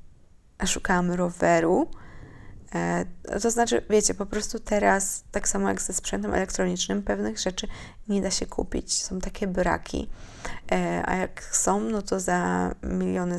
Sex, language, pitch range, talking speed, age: female, Polish, 135-195 Hz, 140 wpm, 20-39